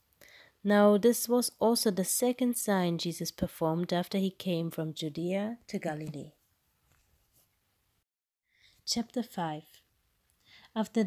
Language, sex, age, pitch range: English, female, 30-49, 160-205 Hz